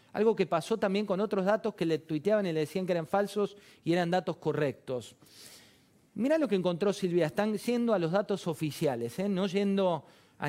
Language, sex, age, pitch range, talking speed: Spanish, male, 40-59, 155-210 Hz, 200 wpm